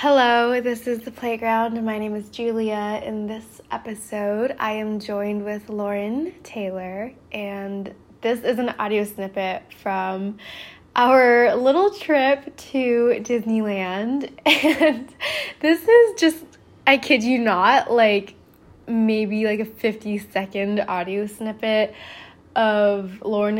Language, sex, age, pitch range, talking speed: English, female, 10-29, 205-255 Hz, 120 wpm